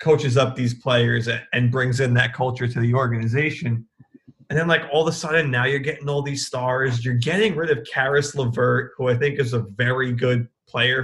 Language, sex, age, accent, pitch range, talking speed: English, male, 20-39, American, 120-145 Hz, 210 wpm